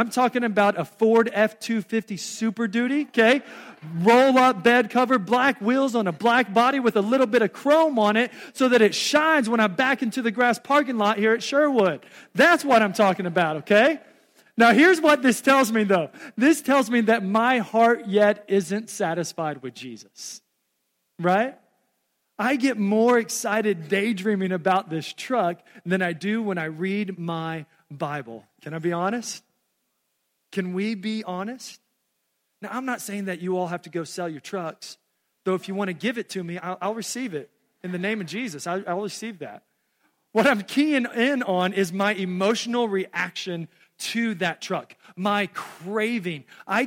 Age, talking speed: 40-59, 180 wpm